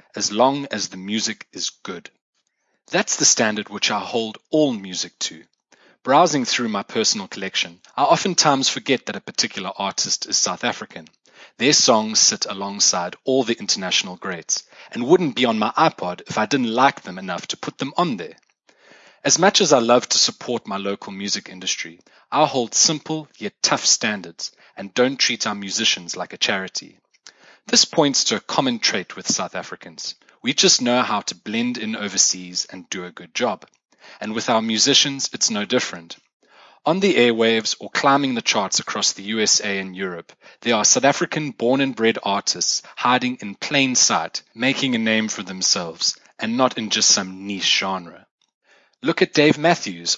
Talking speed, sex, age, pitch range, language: 180 wpm, male, 30-49, 100-135 Hz, English